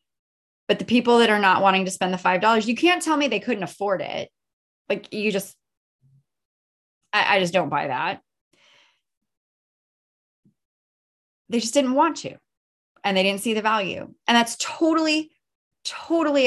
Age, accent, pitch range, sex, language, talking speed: 20-39, American, 175-230 Hz, female, English, 155 wpm